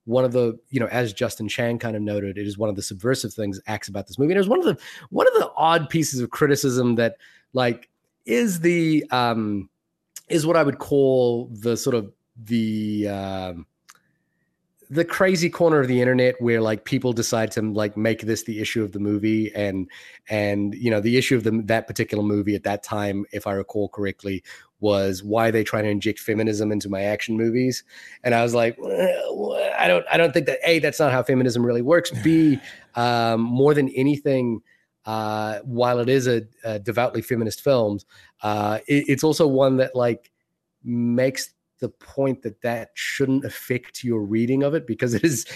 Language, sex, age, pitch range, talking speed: English, male, 30-49, 110-140 Hz, 200 wpm